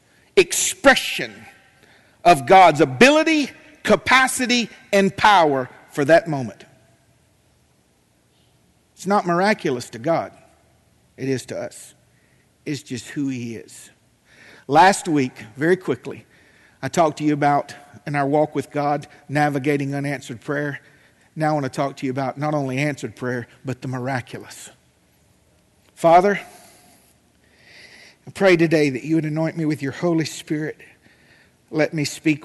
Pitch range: 140-180 Hz